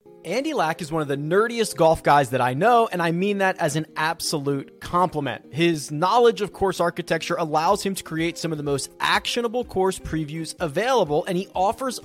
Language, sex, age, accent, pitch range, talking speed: English, male, 30-49, American, 140-205 Hz, 200 wpm